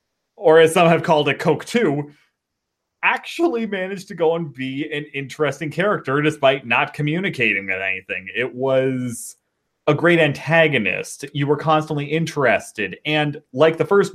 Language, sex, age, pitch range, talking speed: English, male, 30-49, 125-160 Hz, 150 wpm